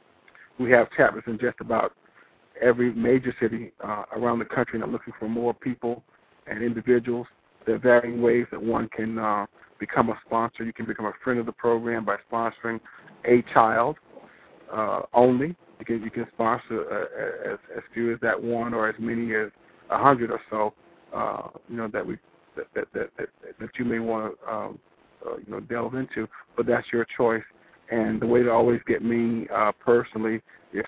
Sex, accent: male, American